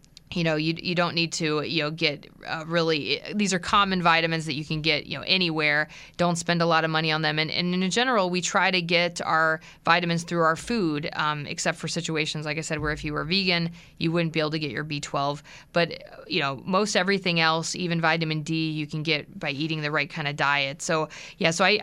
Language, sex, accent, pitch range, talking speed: English, female, American, 155-180 Hz, 240 wpm